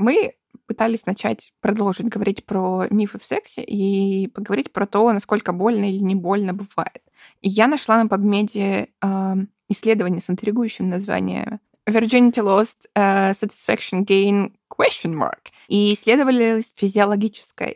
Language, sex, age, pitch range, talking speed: Russian, female, 20-39, 195-225 Hz, 125 wpm